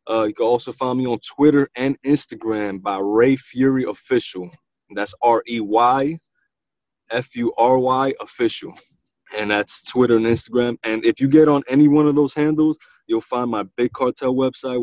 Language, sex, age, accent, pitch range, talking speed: English, male, 20-39, American, 110-140 Hz, 180 wpm